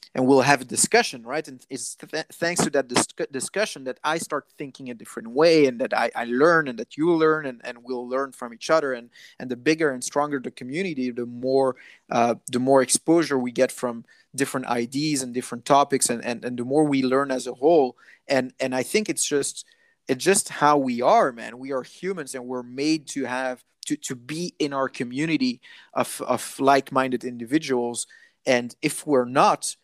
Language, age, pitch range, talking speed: English, 30-49, 125-155 Hz, 205 wpm